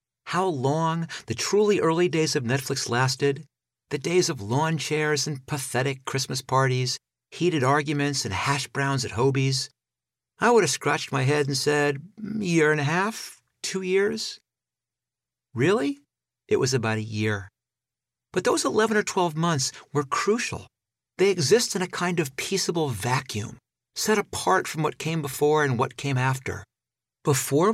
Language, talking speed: English, 155 wpm